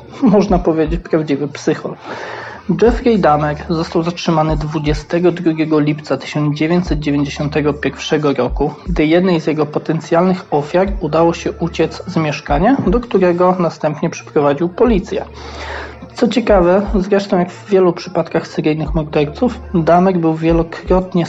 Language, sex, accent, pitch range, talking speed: Polish, male, native, 150-175 Hz, 115 wpm